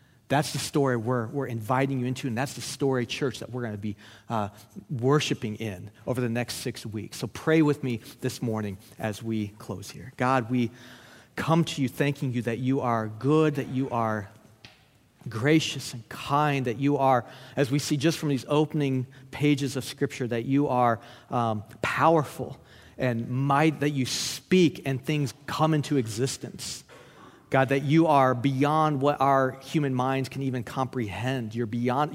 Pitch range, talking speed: 120-145 Hz, 175 wpm